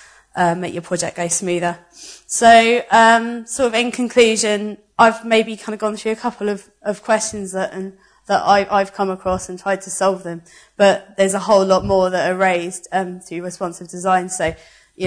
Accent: British